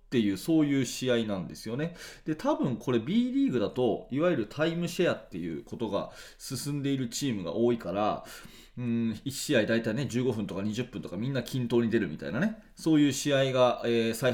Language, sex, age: Japanese, male, 30-49